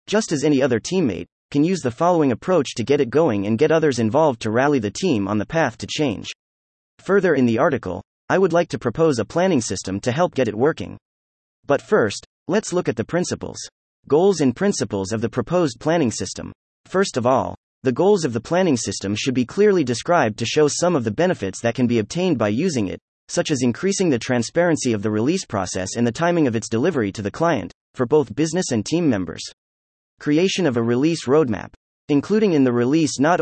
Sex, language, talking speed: male, English, 215 wpm